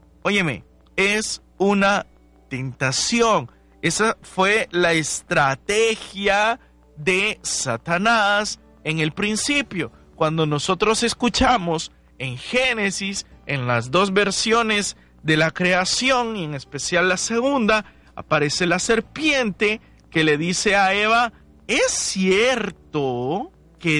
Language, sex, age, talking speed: Spanish, male, 50-69, 105 wpm